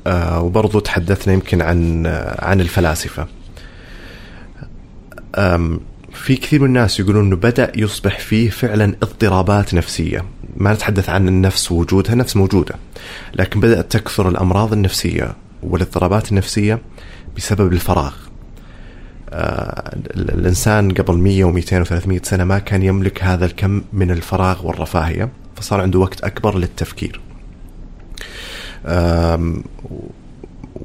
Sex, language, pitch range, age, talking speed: male, Arabic, 90-115 Hz, 30-49, 115 wpm